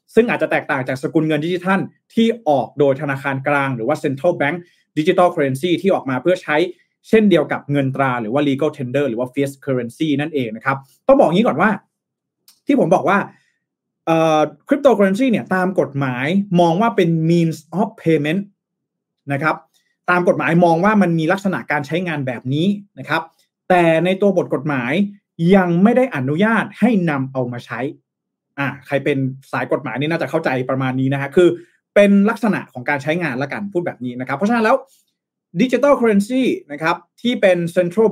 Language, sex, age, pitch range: Thai, male, 20-39, 140-195 Hz